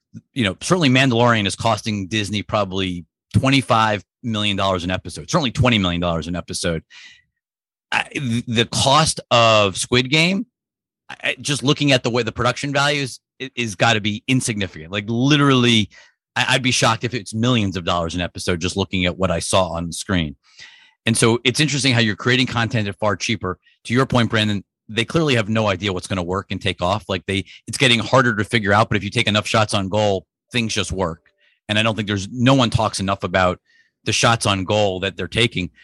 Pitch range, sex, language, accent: 95-125 Hz, male, English, American